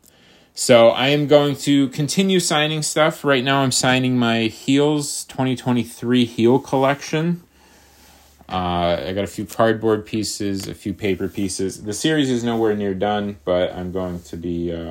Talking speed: 160 wpm